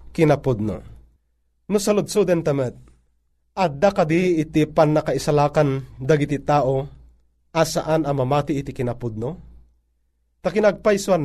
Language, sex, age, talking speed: Filipino, male, 30-49, 90 wpm